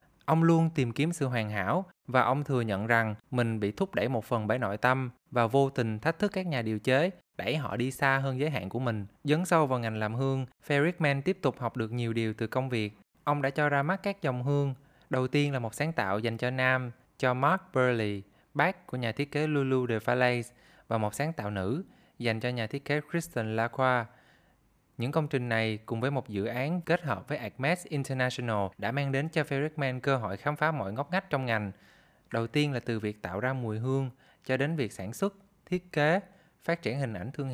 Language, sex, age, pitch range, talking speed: Vietnamese, male, 20-39, 115-150 Hz, 230 wpm